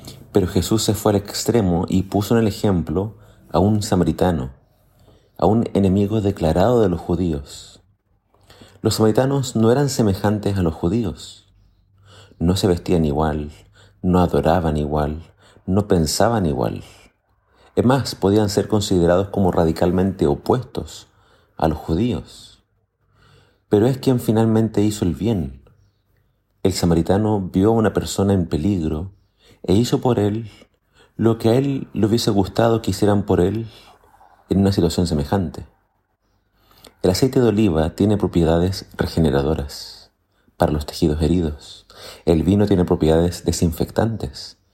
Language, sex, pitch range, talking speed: Spanish, male, 85-110 Hz, 135 wpm